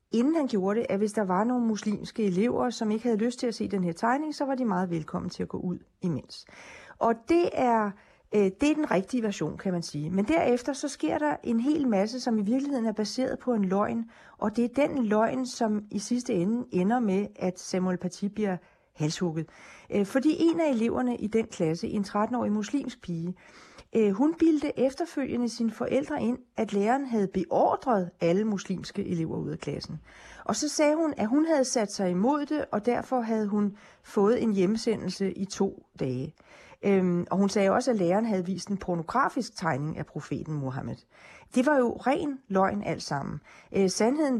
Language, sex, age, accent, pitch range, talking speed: Danish, female, 40-59, native, 185-250 Hz, 195 wpm